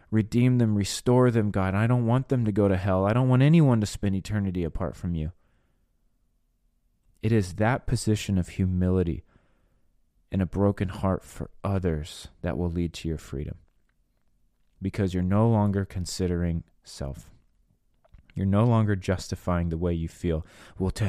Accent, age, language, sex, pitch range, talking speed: American, 30-49, English, male, 85-105 Hz, 160 wpm